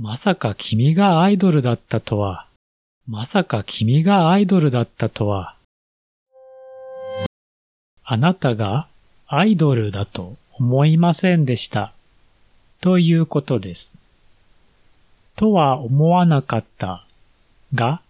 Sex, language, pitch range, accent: male, Japanese, 100-160 Hz, native